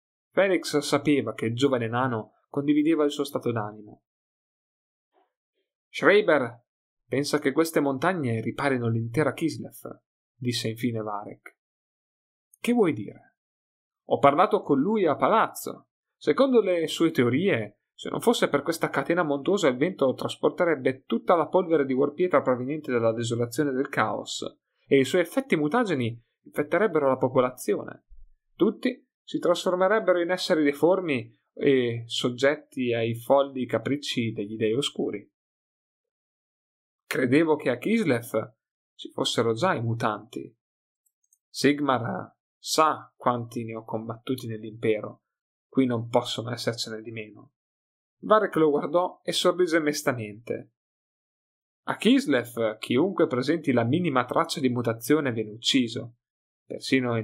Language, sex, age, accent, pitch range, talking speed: Italian, male, 30-49, native, 115-155 Hz, 125 wpm